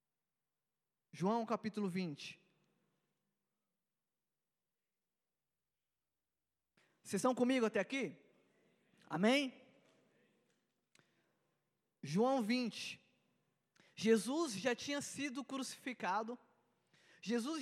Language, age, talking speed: Portuguese, 20-39, 60 wpm